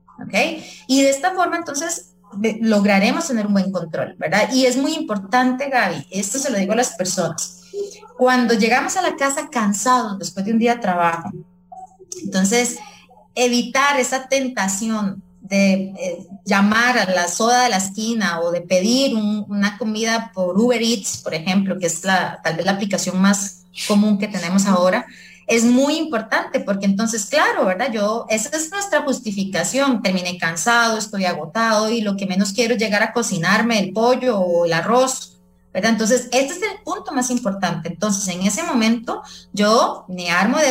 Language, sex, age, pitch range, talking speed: English, female, 30-49, 190-250 Hz, 175 wpm